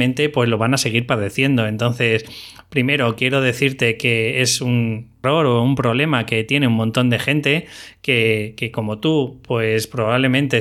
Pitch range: 115-135 Hz